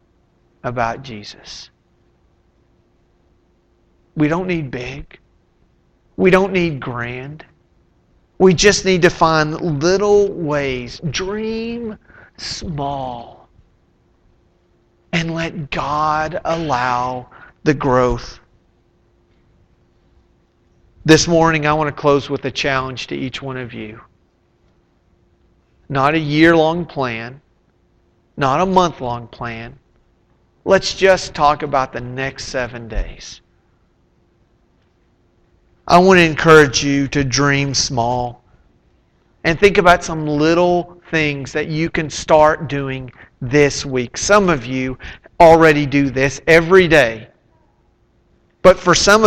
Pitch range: 125-165 Hz